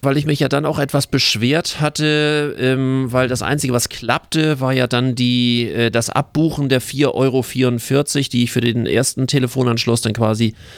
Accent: German